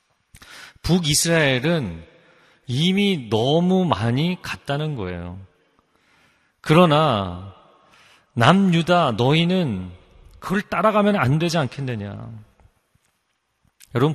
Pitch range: 110-155 Hz